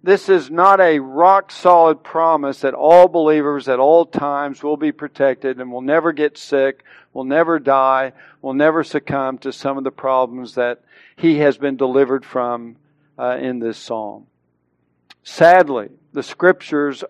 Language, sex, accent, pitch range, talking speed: English, male, American, 140-165 Hz, 155 wpm